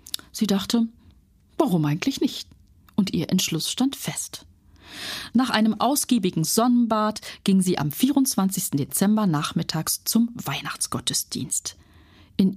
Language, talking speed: German, 110 wpm